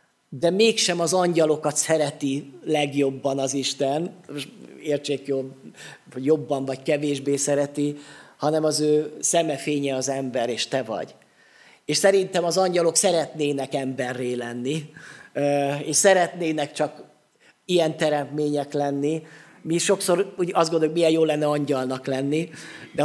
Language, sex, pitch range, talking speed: Hungarian, male, 140-180 Hz, 125 wpm